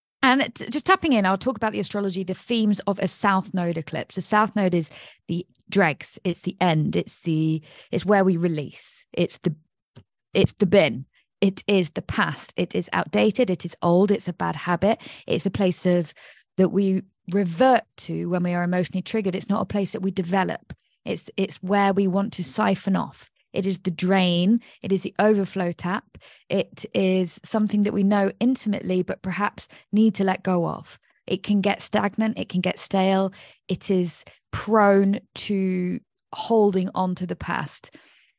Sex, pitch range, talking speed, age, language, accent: female, 180-210 Hz, 185 wpm, 20-39, English, British